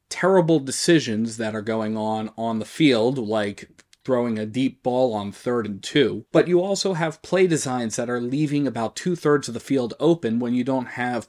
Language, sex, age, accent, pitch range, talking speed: English, male, 30-49, American, 110-135 Hz, 195 wpm